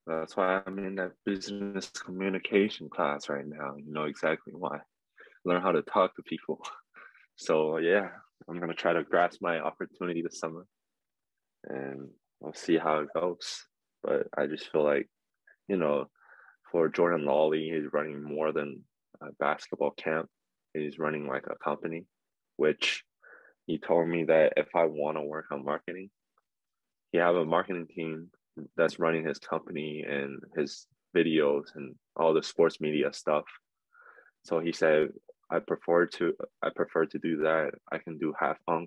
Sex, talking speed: male, 165 wpm